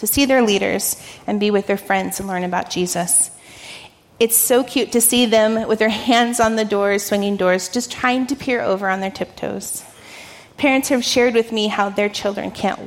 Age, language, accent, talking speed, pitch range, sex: 30-49, English, American, 205 wpm, 190-230 Hz, female